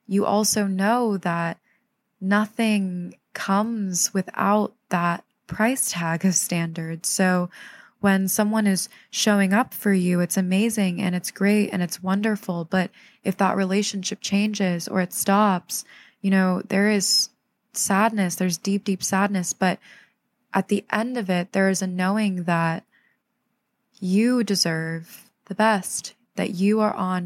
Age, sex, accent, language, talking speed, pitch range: 20-39, female, American, English, 140 wpm, 180-210 Hz